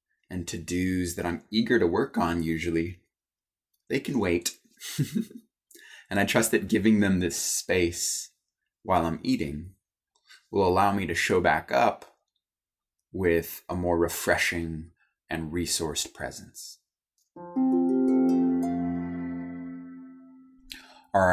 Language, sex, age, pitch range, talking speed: English, male, 20-39, 85-100 Hz, 105 wpm